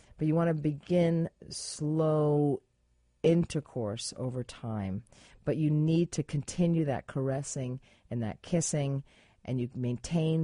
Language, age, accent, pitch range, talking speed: English, 40-59, American, 120-175 Hz, 125 wpm